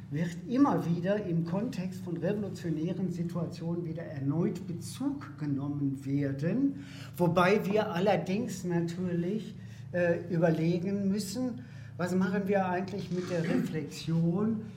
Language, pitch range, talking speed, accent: German, 145-185 Hz, 110 wpm, German